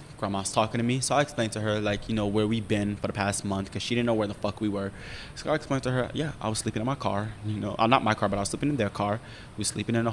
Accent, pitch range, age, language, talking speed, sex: American, 105-120 Hz, 20-39, English, 340 wpm, male